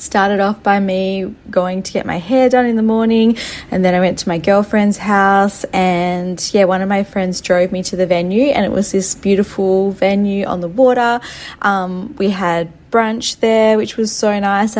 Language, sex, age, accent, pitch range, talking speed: English, female, 20-39, Australian, 185-220 Hz, 205 wpm